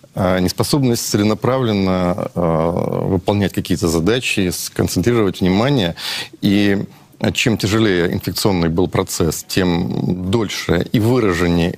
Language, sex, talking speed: Russian, male, 85 wpm